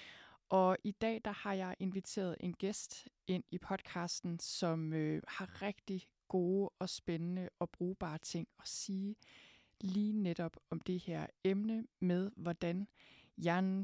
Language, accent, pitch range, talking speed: Danish, native, 170-195 Hz, 145 wpm